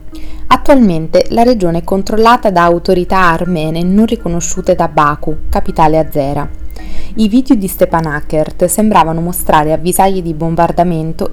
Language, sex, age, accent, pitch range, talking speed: Italian, female, 30-49, native, 155-190 Hz, 125 wpm